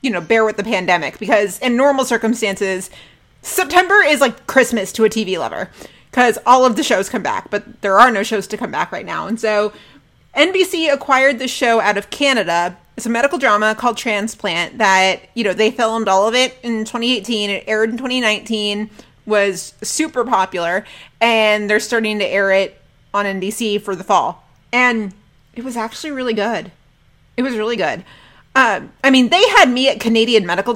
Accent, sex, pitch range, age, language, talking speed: American, female, 205-255 Hz, 30-49, English, 190 wpm